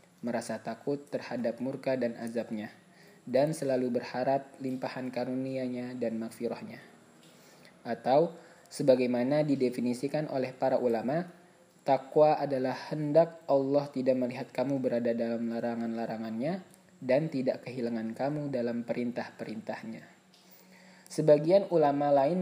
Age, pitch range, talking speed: 20-39, 125-155 Hz, 100 wpm